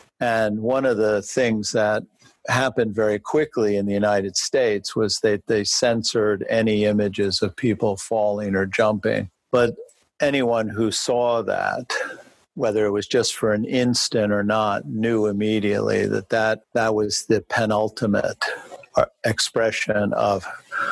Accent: American